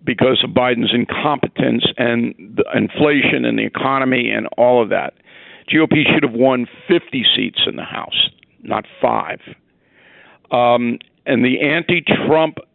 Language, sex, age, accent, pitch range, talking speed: English, male, 60-79, American, 130-160 Hz, 135 wpm